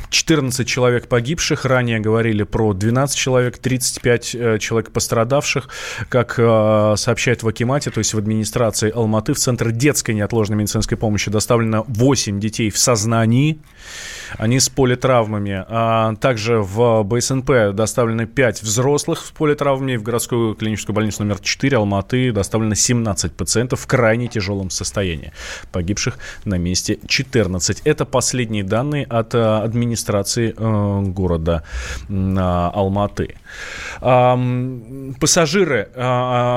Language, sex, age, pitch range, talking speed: Russian, male, 20-39, 105-125 Hz, 115 wpm